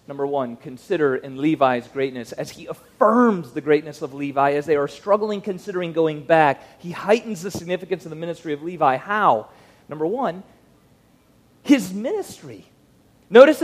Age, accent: 40-59, American